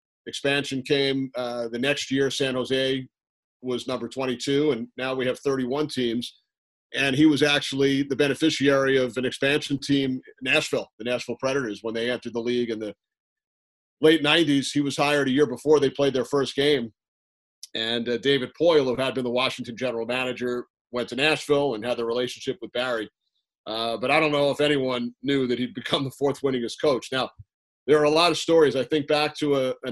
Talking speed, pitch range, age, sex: 200 wpm, 120-140 Hz, 40-59, male